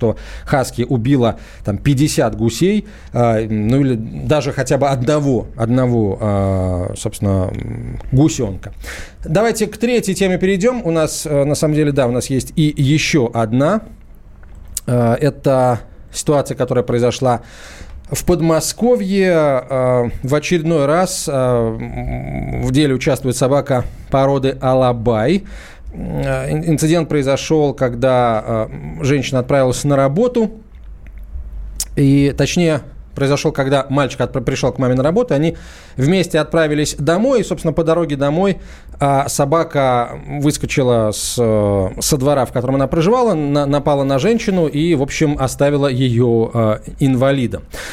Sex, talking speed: male, 120 wpm